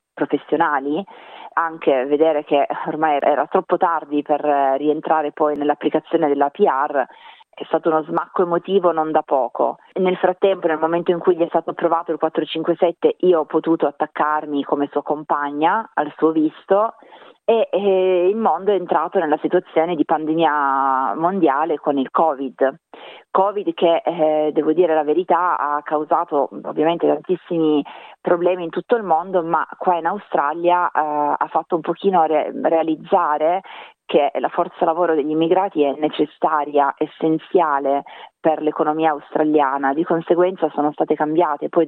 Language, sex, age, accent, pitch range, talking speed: Italian, female, 30-49, native, 150-180 Hz, 145 wpm